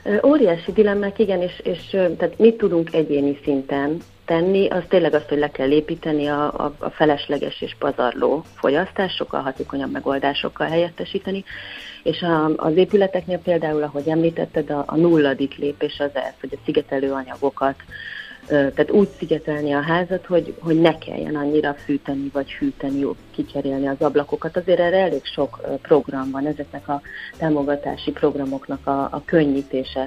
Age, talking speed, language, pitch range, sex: 30-49, 150 wpm, Hungarian, 140-170 Hz, female